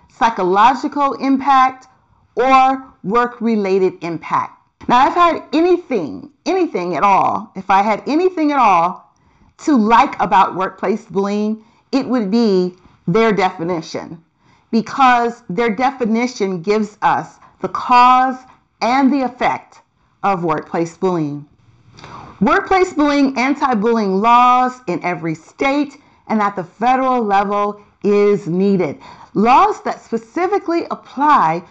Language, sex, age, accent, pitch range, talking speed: English, female, 40-59, American, 190-275 Hz, 115 wpm